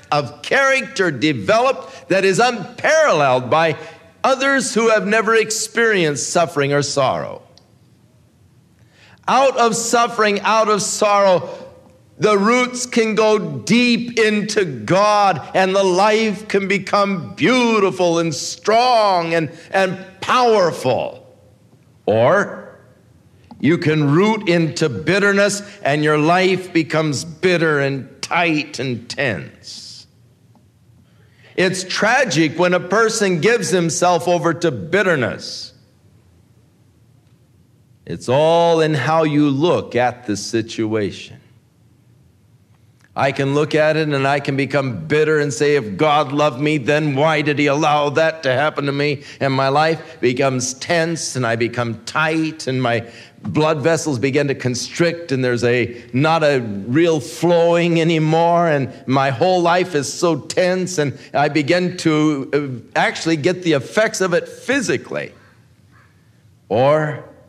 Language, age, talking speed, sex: English, 50-69, 125 wpm, male